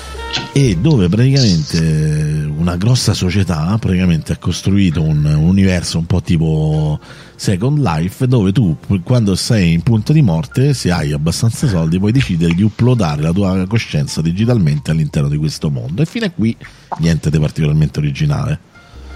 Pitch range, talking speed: 80-135 Hz, 150 wpm